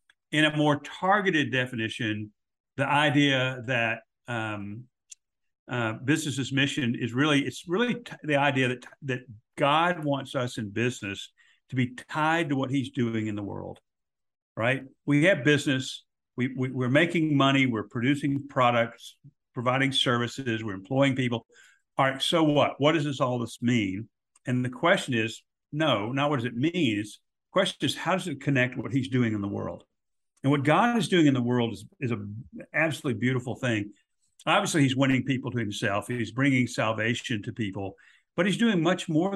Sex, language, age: male, English, 60-79